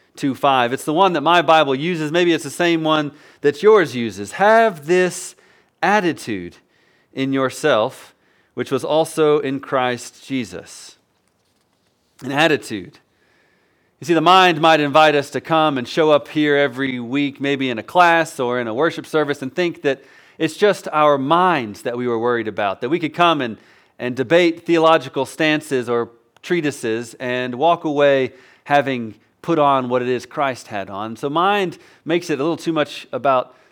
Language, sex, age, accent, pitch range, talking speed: English, male, 40-59, American, 130-170 Hz, 170 wpm